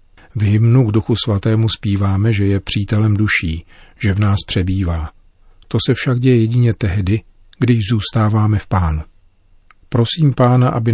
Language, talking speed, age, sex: Czech, 150 wpm, 40-59, male